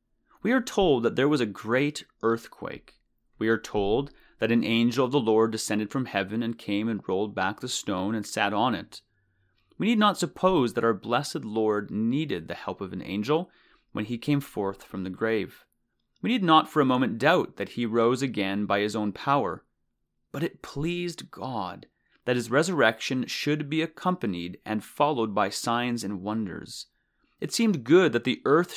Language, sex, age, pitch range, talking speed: English, male, 30-49, 110-150 Hz, 190 wpm